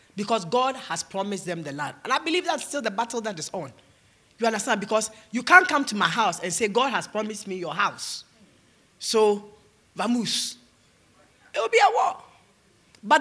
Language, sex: English, female